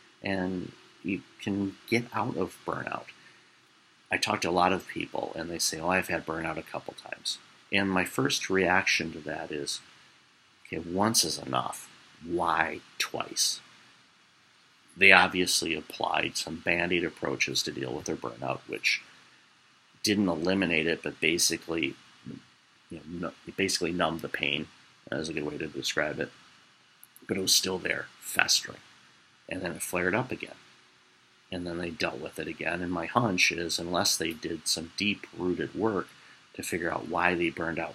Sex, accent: male, American